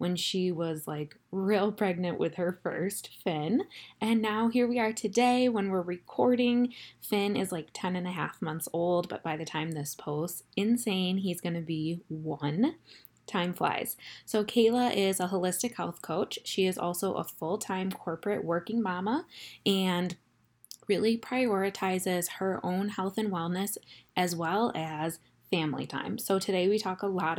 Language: English